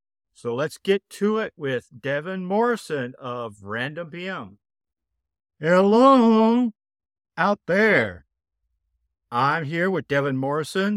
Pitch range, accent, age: 105-170 Hz, American, 50-69